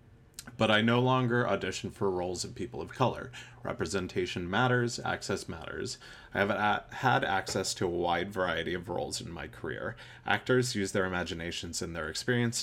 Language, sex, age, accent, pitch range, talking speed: English, male, 30-49, American, 85-115 Hz, 165 wpm